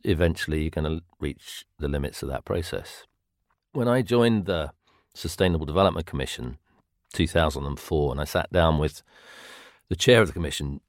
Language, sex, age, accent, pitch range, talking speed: English, male, 40-59, British, 75-95 Hz, 155 wpm